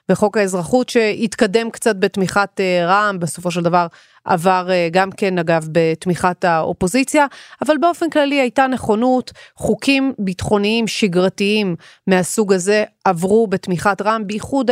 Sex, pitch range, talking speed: female, 175-220 Hz, 120 wpm